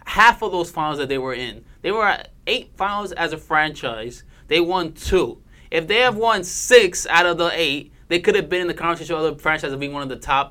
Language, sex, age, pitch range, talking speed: English, male, 20-39, 135-175 Hz, 245 wpm